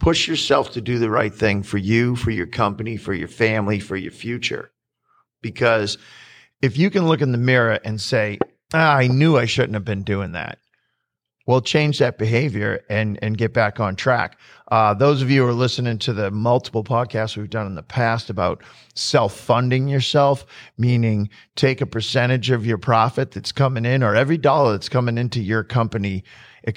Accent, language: American, English